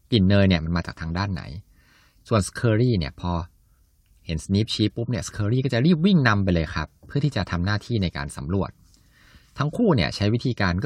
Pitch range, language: 85-115 Hz, Thai